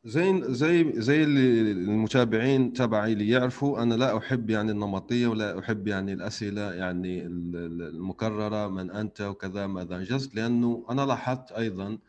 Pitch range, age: 105-125 Hz, 30-49